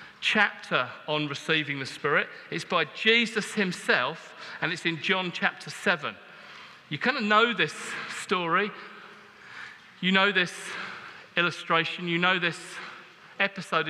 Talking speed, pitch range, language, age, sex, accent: 125 wpm, 170-230 Hz, English, 40-59, male, British